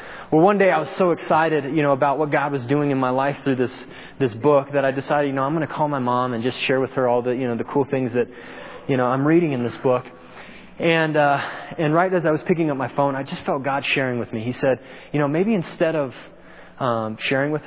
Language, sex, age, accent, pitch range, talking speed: English, male, 20-39, American, 120-145 Hz, 270 wpm